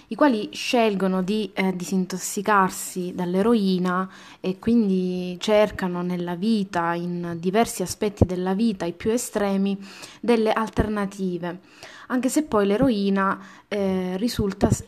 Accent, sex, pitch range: native, female, 185-230 Hz